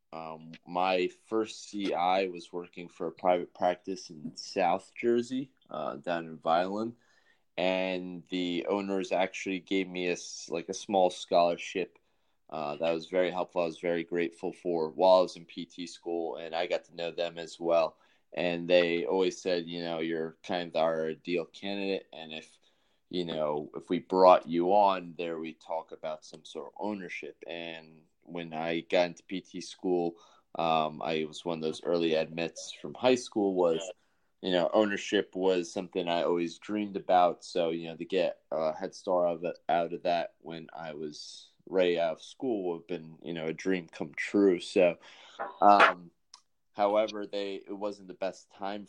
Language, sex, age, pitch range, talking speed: English, male, 20-39, 80-95 Hz, 180 wpm